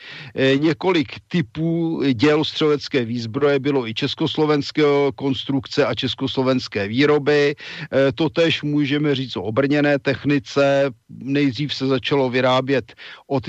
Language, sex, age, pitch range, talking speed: Czech, male, 50-69, 115-135 Hz, 100 wpm